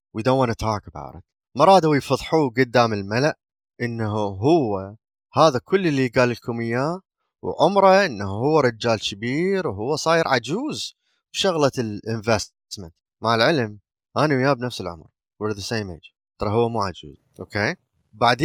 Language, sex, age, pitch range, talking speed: Arabic, male, 20-39, 110-155 Hz, 120 wpm